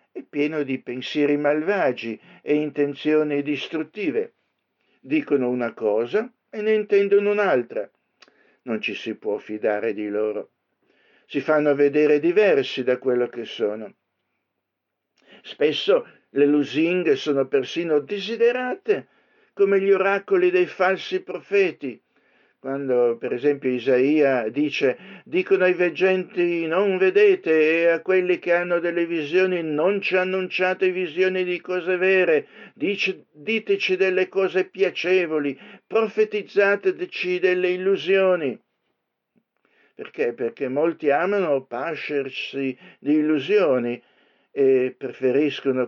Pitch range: 145-200 Hz